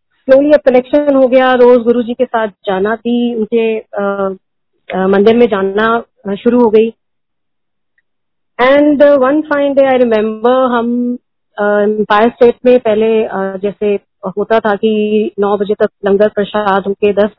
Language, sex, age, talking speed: Hindi, female, 30-49, 140 wpm